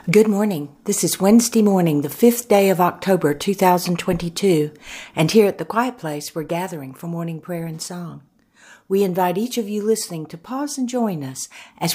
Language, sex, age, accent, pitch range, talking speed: English, female, 60-79, American, 150-230 Hz, 185 wpm